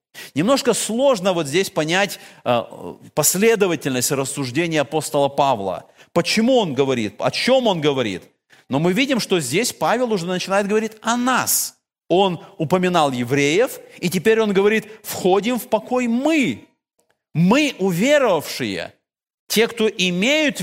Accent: native